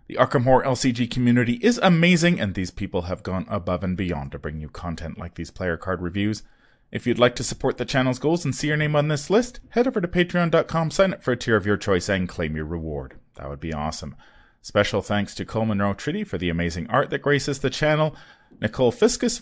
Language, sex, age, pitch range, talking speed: English, male, 30-49, 100-145 Hz, 230 wpm